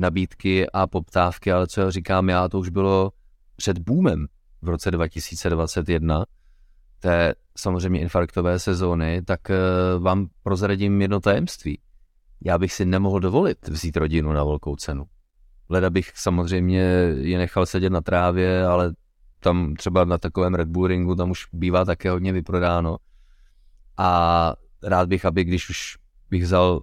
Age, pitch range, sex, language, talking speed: 30-49, 85-95 Hz, male, Czech, 140 wpm